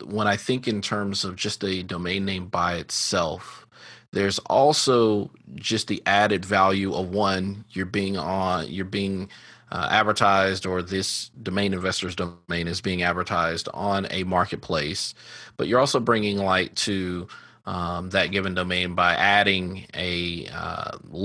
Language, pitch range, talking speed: English, 90-105 Hz, 145 wpm